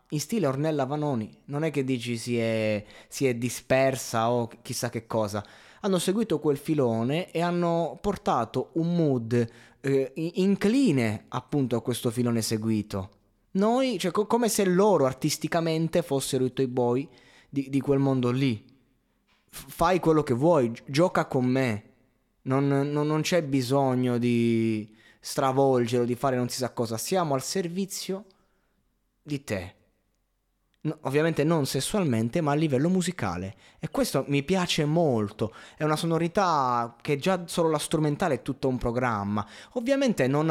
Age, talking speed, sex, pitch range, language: 20-39, 150 wpm, male, 115-155 Hz, Italian